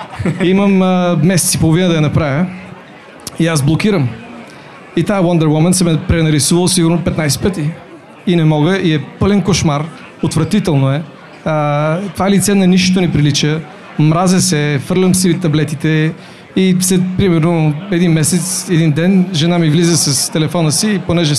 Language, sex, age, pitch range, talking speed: Bulgarian, male, 40-59, 155-190 Hz, 165 wpm